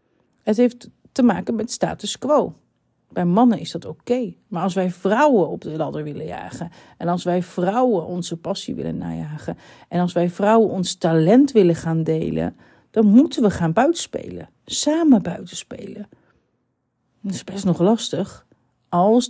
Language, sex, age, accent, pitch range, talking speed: Dutch, female, 40-59, Dutch, 160-205 Hz, 160 wpm